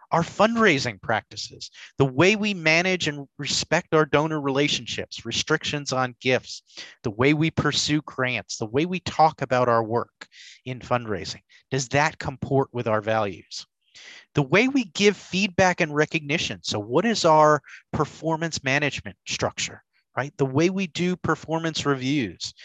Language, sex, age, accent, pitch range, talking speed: English, male, 30-49, American, 125-170 Hz, 150 wpm